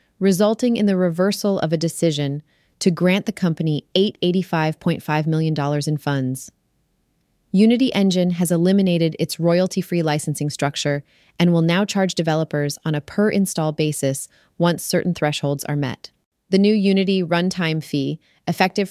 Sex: female